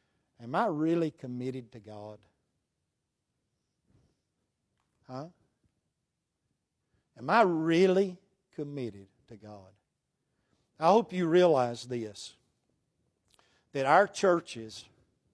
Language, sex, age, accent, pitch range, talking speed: English, male, 60-79, American, 110-155 Hz, 80 wpm